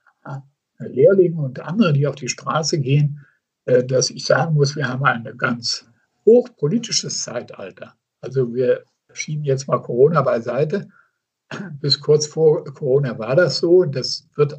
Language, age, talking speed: German, 60-79, 145 wpm